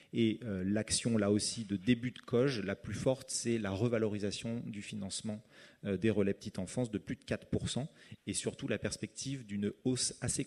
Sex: male